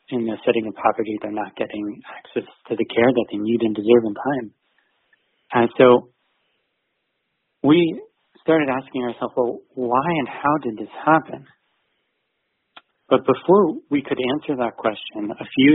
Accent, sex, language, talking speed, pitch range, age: American, male, English, 155 wpm, 115-135 Hz, 30-49